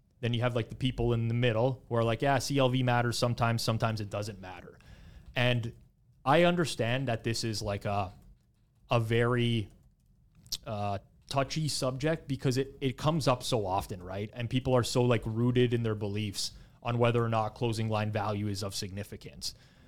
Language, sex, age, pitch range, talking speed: English, male, 30-49, 110-130 Hz, 180 wpm